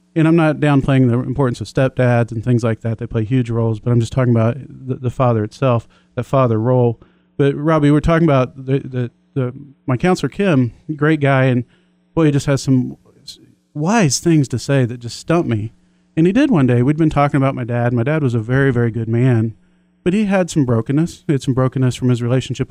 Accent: American